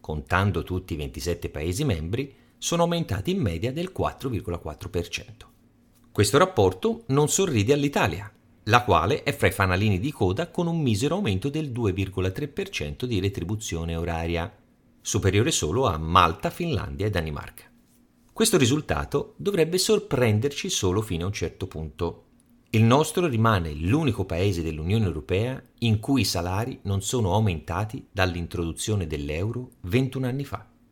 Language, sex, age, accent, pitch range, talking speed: Italian, male, 40-59, native, 95-130 Hz, 135 wpm